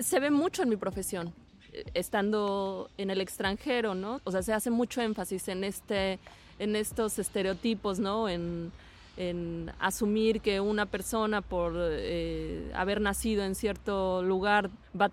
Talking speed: 150 wpm